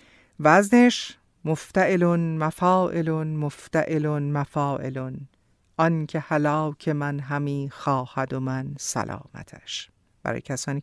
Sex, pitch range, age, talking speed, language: female, 140-210 Hz, 50-69, 85 wpm, Persian